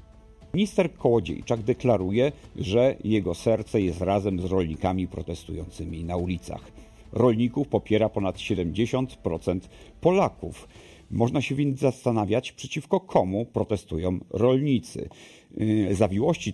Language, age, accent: Polish, 50-69, native